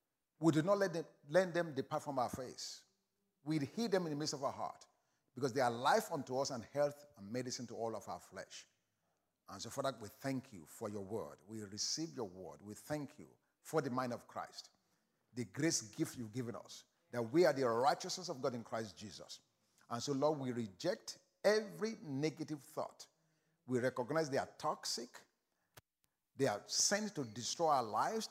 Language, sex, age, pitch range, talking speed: English, male, 50-69, 125-160 Hz, 195 wpm